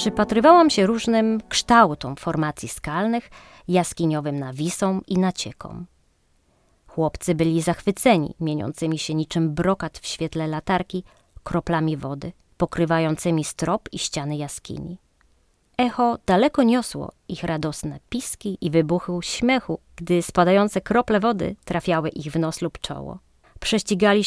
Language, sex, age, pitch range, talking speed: Polish, female, 30-49, 155-210 Hz, 115 wpm